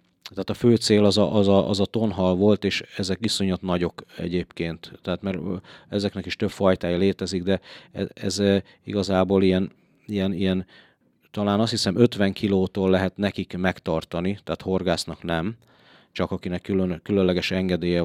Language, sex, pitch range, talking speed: Hungarian, male, 90-105 Hz, 155 wpm